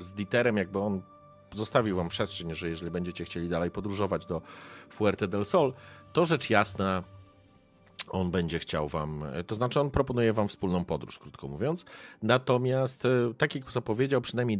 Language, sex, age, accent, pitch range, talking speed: Polish, male, 40-59, native, 85-110 Hz, 155 wpm